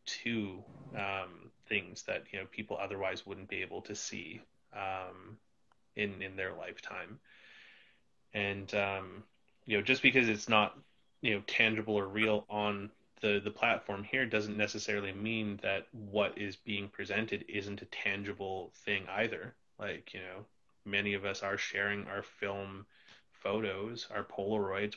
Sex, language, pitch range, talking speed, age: male, English, 100-110 Hz, 150 wpm, 20-39